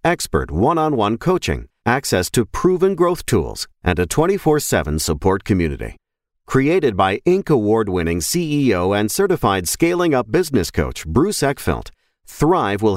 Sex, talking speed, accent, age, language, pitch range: male, 130 wpm, American, 40-59, English, 90-140 Hz